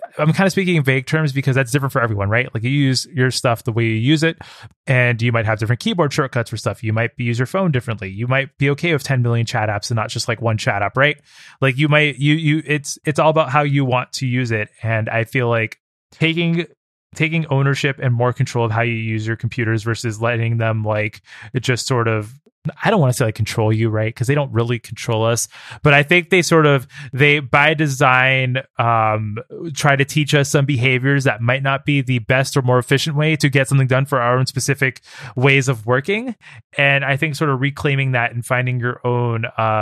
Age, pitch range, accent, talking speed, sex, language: 20-39, 115-145 Hz, American, 240 wpm, male, English